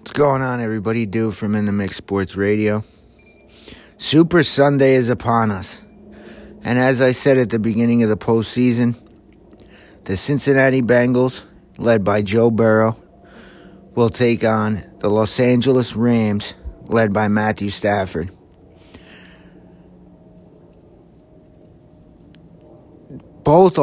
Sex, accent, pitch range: male, American, 105-125 Hz